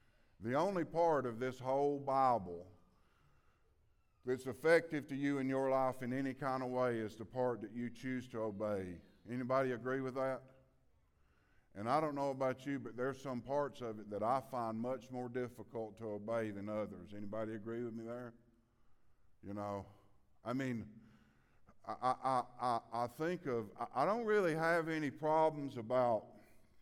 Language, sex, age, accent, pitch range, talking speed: English, male, 50-69, American, 110-140 Hz, 170 wpm